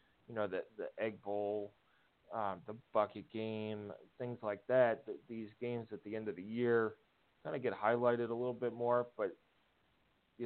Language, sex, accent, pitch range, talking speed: English, male, American, 100-115 Hz, 180 wpm